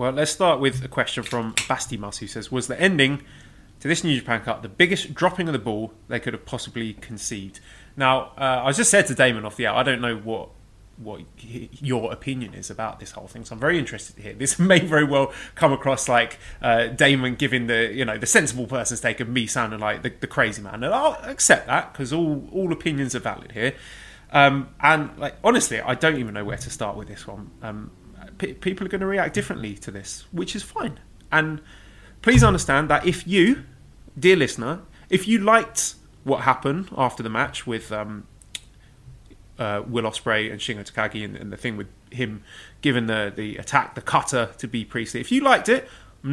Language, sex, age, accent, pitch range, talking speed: English, male, 20-39, British, 110-145 Hz, 210 wpm